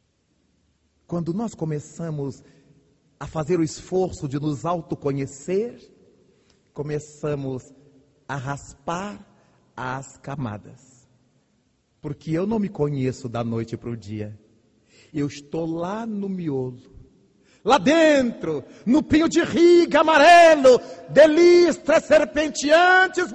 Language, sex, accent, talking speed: Portuguese, male, Brazilian, 100 wpm